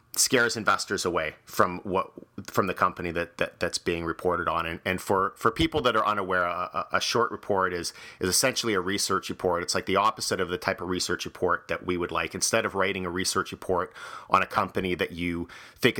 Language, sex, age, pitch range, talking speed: English, male, 40-59, 90-105 Hz, 220 wpm